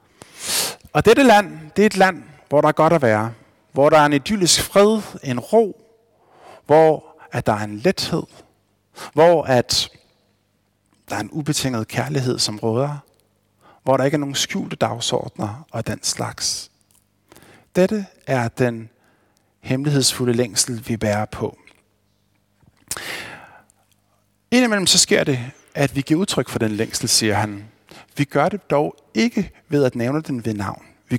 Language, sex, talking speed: Danish, male, 150 wpm